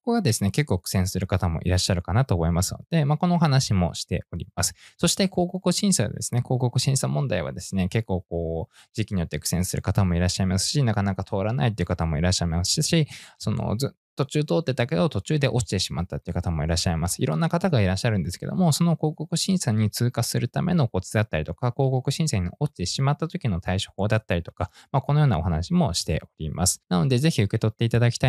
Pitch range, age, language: 90-135 Hz, 20-39, Japanese